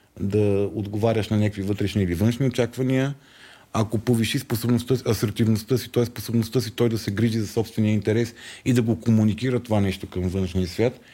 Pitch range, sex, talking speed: 105-135 Hz, male, 170 wpm